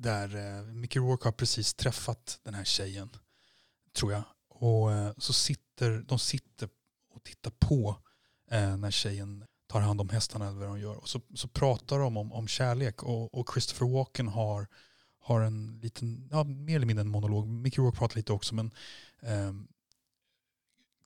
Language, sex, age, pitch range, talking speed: Swedish, male, 30-49, 105-125 Hz, 175 wpm